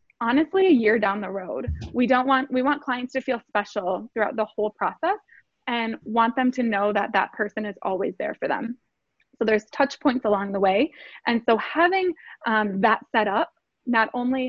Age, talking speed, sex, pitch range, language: 20-39, 200 wpm, female, 210-255 Hz, English